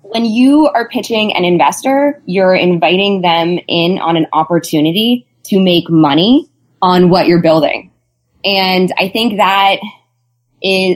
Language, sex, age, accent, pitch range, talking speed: English, female, 20-39, American, 170-215 Hz, 135 wpm